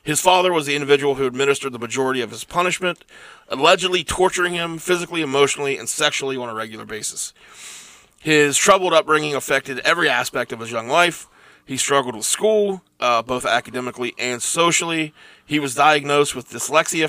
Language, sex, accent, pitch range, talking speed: English, male, American, 125-165 Hz, 165 wpm